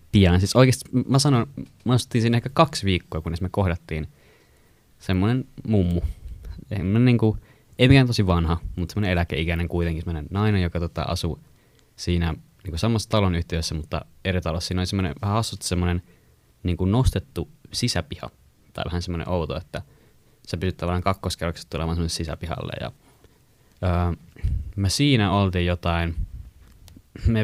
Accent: native